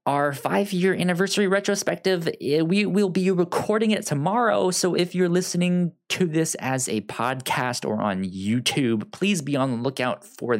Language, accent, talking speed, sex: English, American, 160 wpm, male